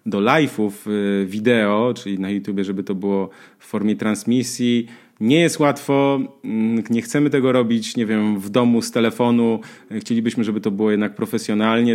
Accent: native